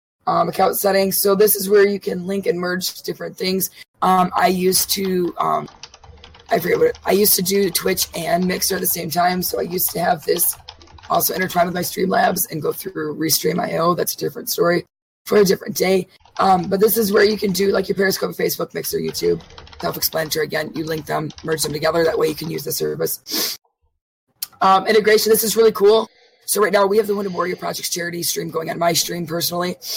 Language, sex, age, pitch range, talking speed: English, female, 20-39, 170-200 Hz, 220 wpm